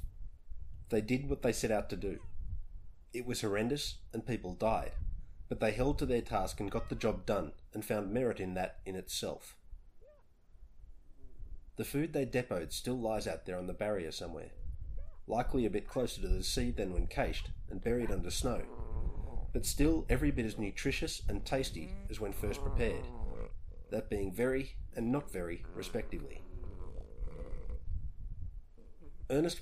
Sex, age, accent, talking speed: male, 30-49, Australian, 160 wpm